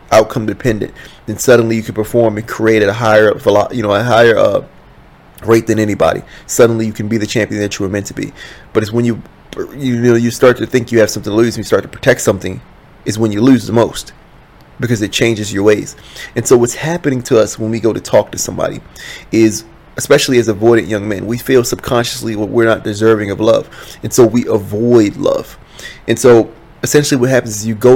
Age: 20-39